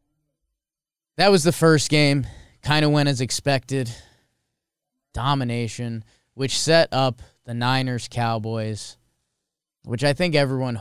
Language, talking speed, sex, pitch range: English, 110 wpm, male, 105-130 Hz